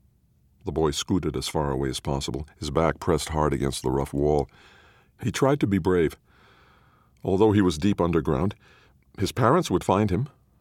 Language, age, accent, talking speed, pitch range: English, 50-69, American, 175 wpm, 70-100 Hz